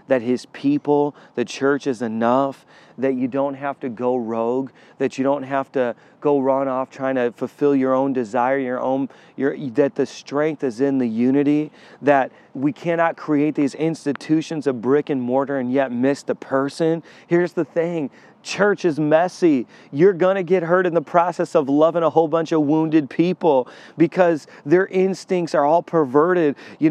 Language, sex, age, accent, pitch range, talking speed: English, male, 30-49, American, 145-175 Hz, 180 wpm